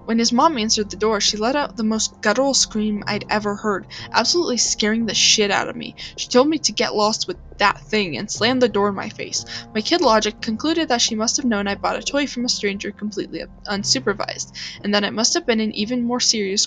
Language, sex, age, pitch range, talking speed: English, female, 10-29, 205-255 Hz, 240 wpm